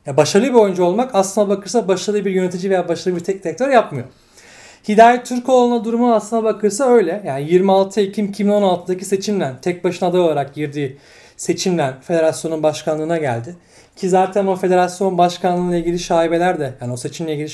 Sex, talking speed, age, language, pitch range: male, 160 wpm, 40-59, Turkish, 155-205 Hz